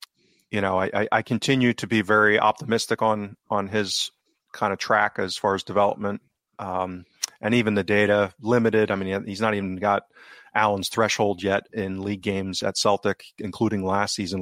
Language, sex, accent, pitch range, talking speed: English, male, American, 95-110 Hz, 175 wpm